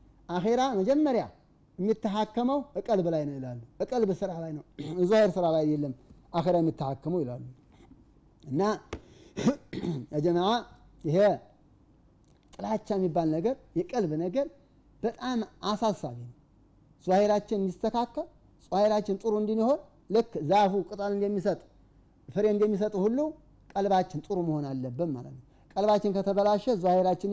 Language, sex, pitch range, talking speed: Amharic, male, 160-210 Hz, 110 wpm